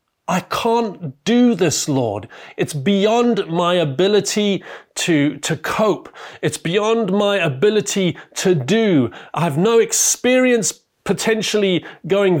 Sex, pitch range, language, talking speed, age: male, 145-200 Hz, English, 115 wpm, 30-49